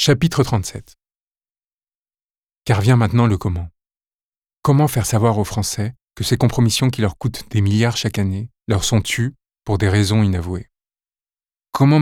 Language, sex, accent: French, male, French